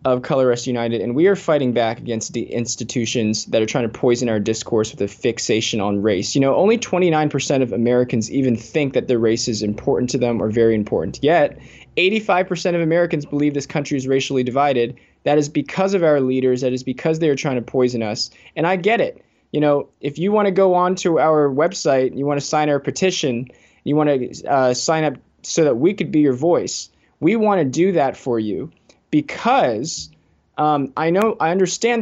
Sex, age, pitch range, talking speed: male, 20-39, 120-150 Hz, 215 wpm